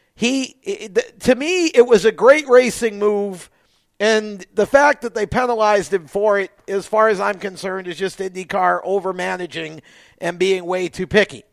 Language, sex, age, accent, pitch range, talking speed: English, male, 50-69, American, 155-220 Hz, 165 wpm